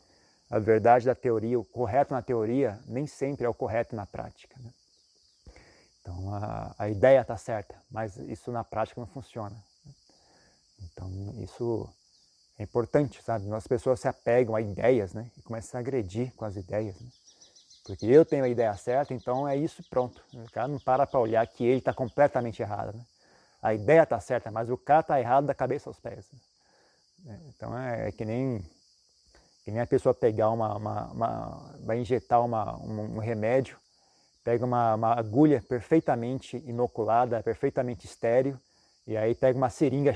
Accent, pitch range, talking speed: Brazilian, 110-135 Hz, 175 wpm